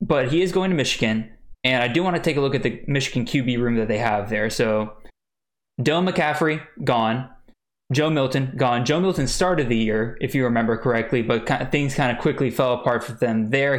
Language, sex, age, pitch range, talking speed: English, male, 20-39, 120-150 Hz, 220 wpm